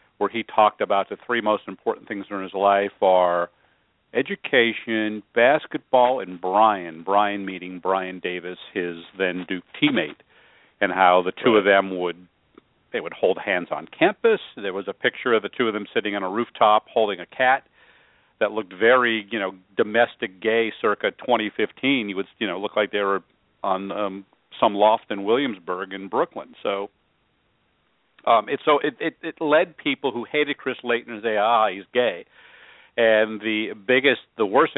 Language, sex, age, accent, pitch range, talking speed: English, male, 50-69, American, 95-125 Hz, 175 wpm